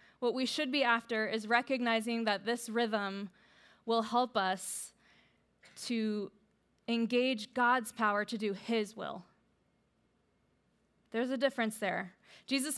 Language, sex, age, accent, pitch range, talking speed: English, female, 20-39, American, 210-255 Hz, 120 wpm